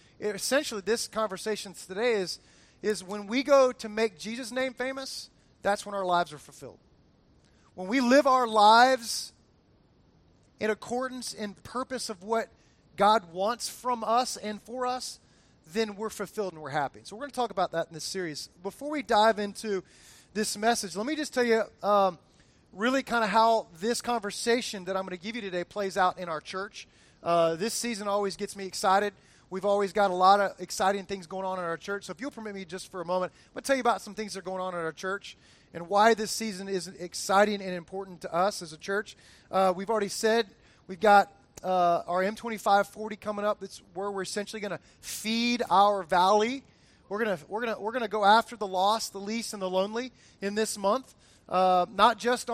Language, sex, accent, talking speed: English, male, American, 210 wpm